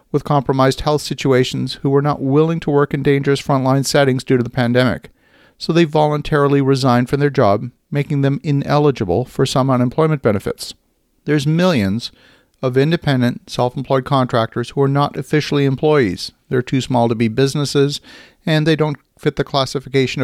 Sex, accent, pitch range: male, American, 125-145 Hz